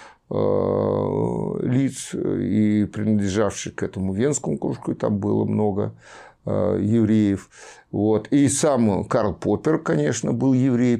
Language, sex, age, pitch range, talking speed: Russian, male, 60-79, 105-140 Hz, 110 wpm